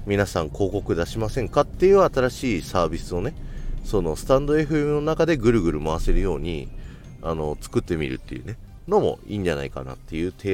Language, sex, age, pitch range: Japanese, male, 40-59, 75-100 Hz